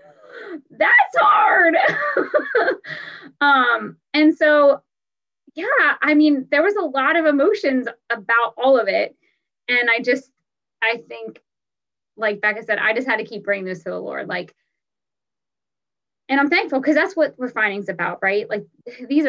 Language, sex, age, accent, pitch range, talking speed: English, female, 20-39, American, 210-290 Hz, 150 wpm